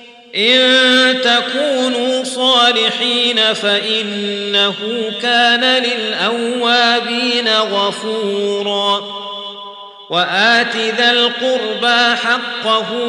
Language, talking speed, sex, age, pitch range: Arabic, 50 wpm, male, 40-59, 205-240 Hz